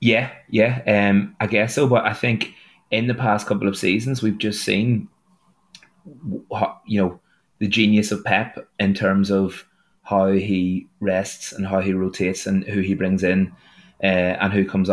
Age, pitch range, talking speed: 20-39, 95-110 Hz, 175 wpm